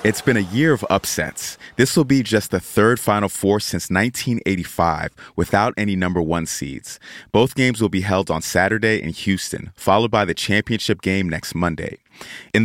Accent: American